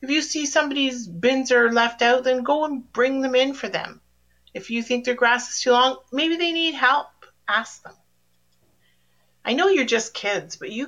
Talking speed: 205 wpm